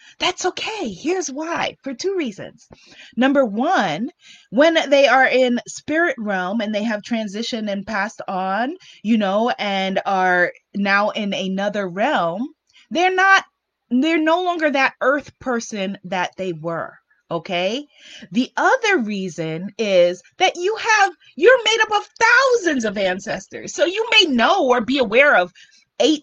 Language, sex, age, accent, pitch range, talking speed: English, female, 30-49, American, 200-335 Hz, 150 wpm